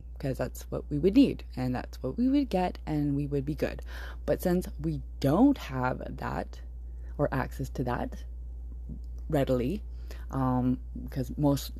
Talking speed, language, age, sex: 160 wpm, English, 20-39, female